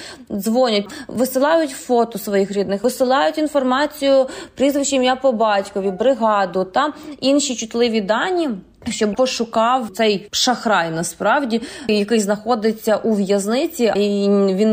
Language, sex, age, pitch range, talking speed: Ukrainian, female, 20-39, 205-250 Hz, 110 wpm